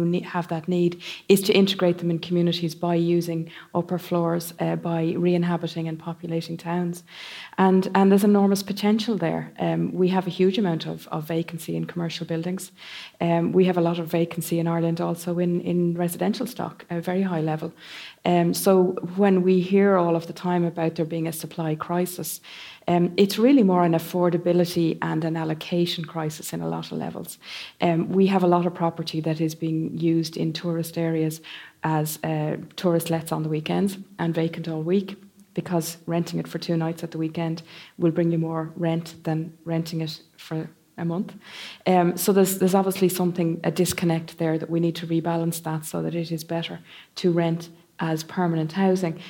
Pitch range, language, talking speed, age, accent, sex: 165-180 Hz, English, 190 wpm, 30-49, Irish, female